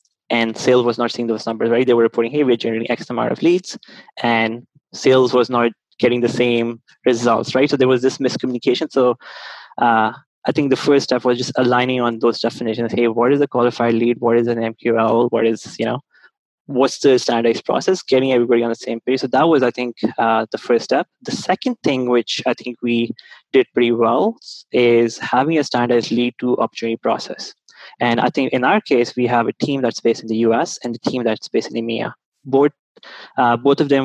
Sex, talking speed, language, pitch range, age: male, 210 wpm, English, 115-130 Hz, 20-39